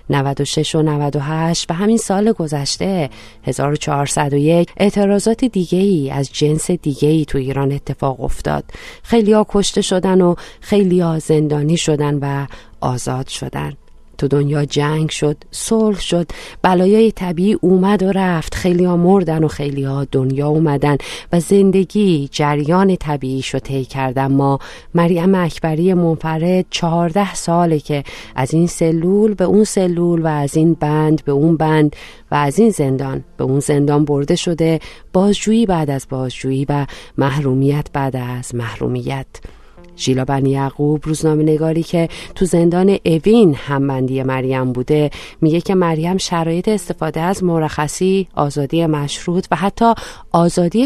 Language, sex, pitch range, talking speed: Persian, female, 140-180 Hz, 135 wpm